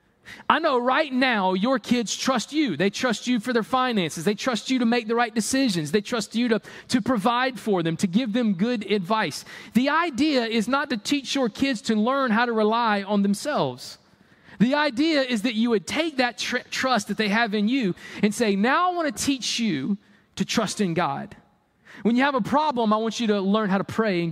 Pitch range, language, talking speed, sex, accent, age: 205-265 Hz, English, 220 wpm, male, American, 20-39